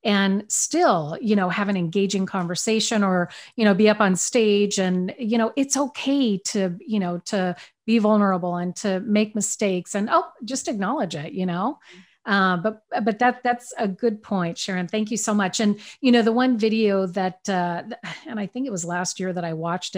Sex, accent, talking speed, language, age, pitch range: female, American, 205 wpm, English, 40-59, 180-220 Hz